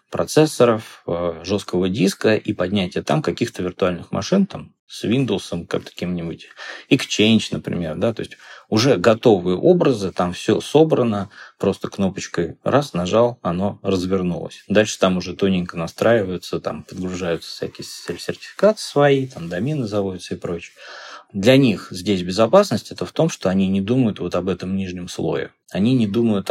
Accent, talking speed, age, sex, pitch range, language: native, 145 wpm, 20-39, male, 90-115 Hz, Russian